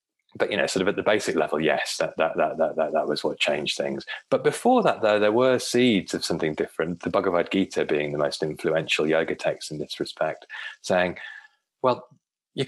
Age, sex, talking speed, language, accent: 30-49, male, 210 wpm, English, British